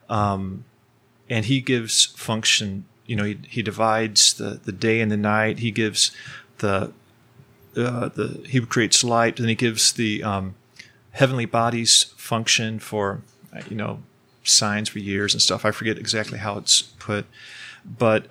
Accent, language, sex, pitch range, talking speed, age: American, English, male, 105-120 Hz, 155 wpm, 30-49